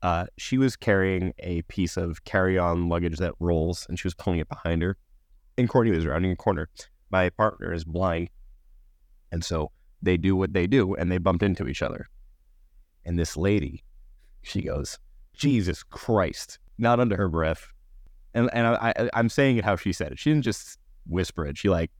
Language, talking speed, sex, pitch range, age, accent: English, 190 wpm, male, 85-110 Hz, 30-49, American